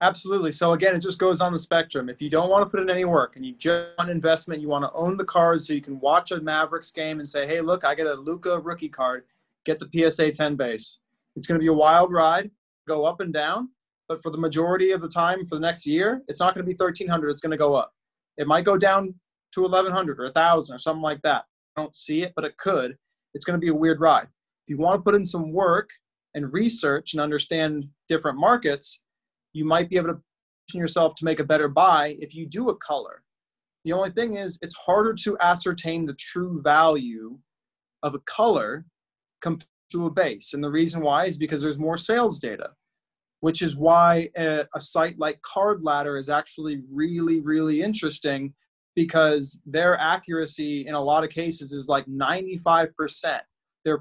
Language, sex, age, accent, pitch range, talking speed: English, male, 30-49, American, 150-175 Hz, 220 wpm